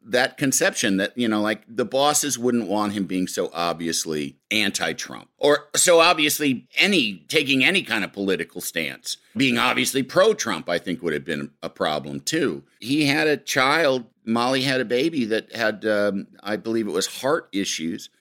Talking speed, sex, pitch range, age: 175 wpm, male, 100-145 Hz, 50-69